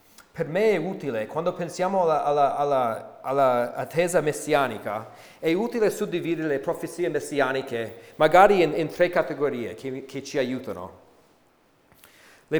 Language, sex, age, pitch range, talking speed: Italian, male, 40-59, 145-185 Hz, 130 wpm